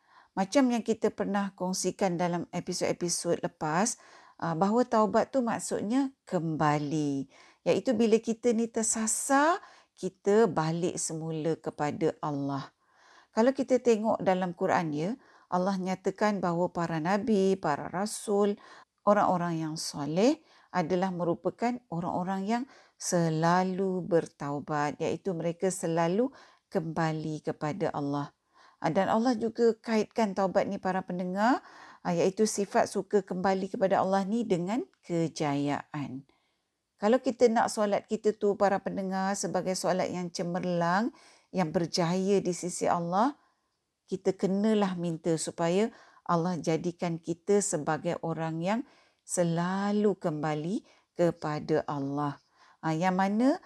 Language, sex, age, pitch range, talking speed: Malay, female, 50-69, 170-220 Hz, 115 wpm